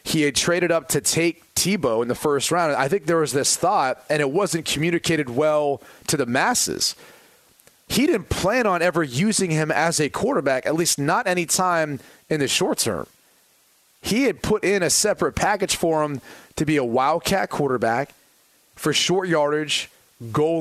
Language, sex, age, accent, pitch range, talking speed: English, male, 30-49, American, 145-185 Hz, 180 wpm